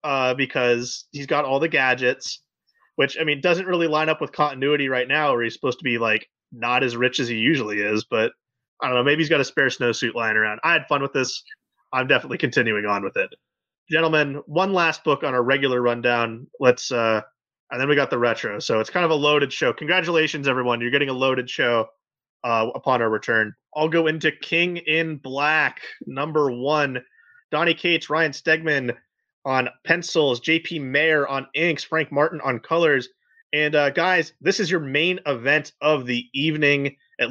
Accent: American